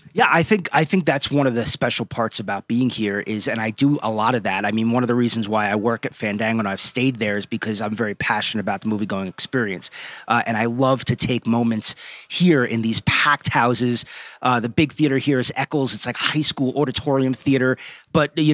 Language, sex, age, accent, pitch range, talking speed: English, male, 30-49, American, 115-150 Hz, 240 wpm